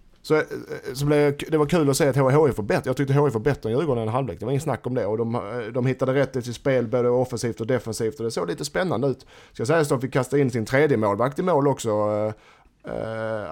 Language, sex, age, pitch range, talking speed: Swedish, male, 30-49, 115-140 Hz, 265 wpm